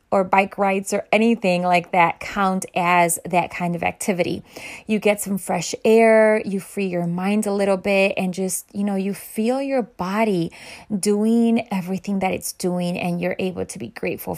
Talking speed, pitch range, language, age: 185 wpm, 185-220 Hz, English, 20-39